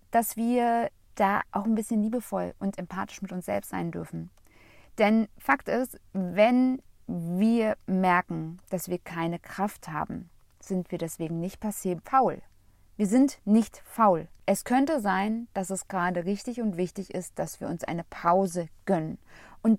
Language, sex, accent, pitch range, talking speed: German, female, German, 180-230 Hz, 160 wpm